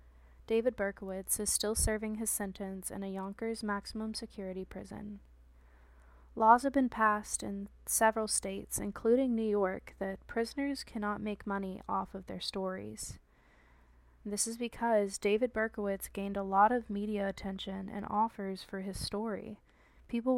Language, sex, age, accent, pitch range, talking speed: English, female, 20-39, American, 190-210 Hz, 145 wpm